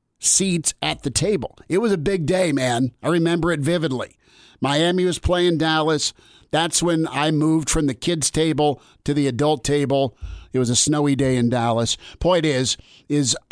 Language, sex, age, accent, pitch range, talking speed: English, male, 50-69, American, 125-155 Hz, 180 wpm